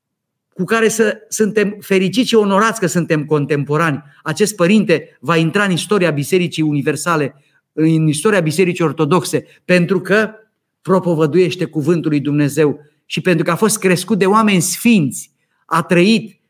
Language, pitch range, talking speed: Romanian, 160-210 Hz, 140 wpm